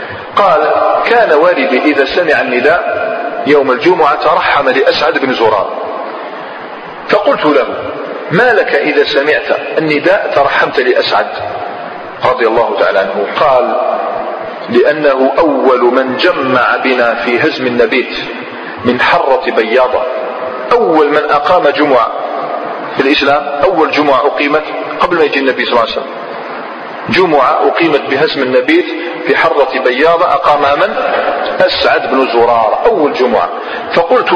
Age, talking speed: 40-59, 120 wpm